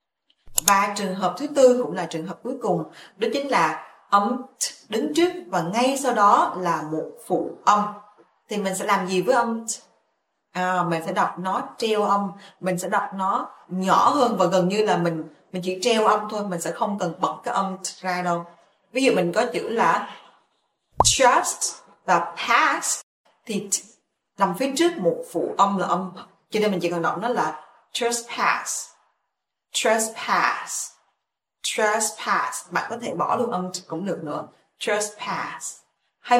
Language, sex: Vietnamese, female